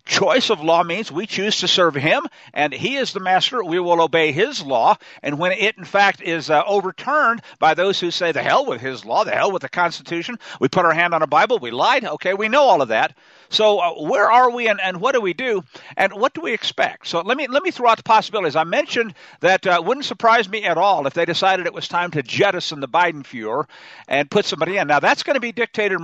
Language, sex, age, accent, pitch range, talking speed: English, male, 60-79, American, 165-215 Hz, 255 wpm